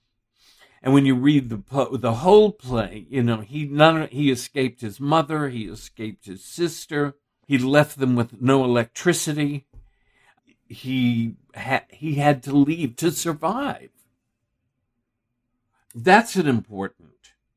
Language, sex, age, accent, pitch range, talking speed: English, male, 60-79, American, 110-140 Hz, 125 wpm